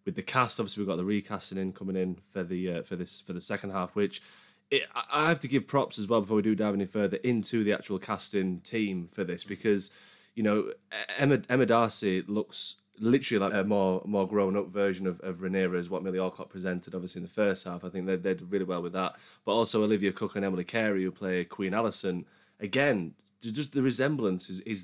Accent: British